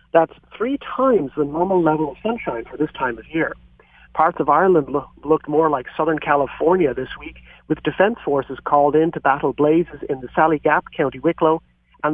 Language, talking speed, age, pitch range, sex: English, 190 wpm, 40-59, 145-170 Hz, male